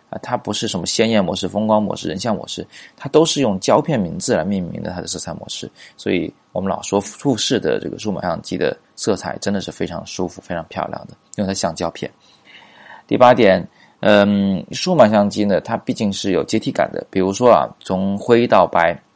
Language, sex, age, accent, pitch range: Chinese, male, 20-39, native, 95-120 Hz